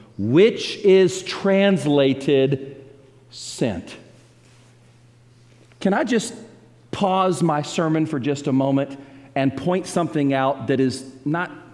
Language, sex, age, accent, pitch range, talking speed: English, male, 40-59, American, 135-195 Hz, 105 wpm